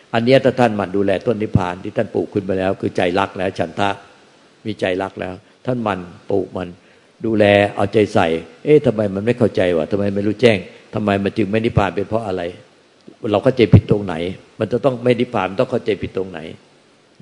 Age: 60-79